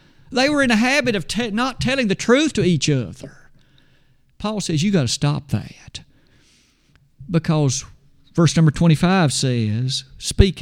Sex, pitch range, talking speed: male, 135-175 Hz, 145 wpm